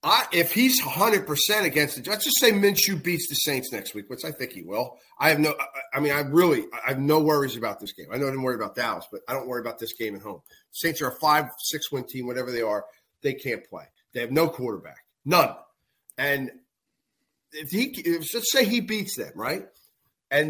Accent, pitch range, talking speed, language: American, 135-195 Hz, 235 wpm, English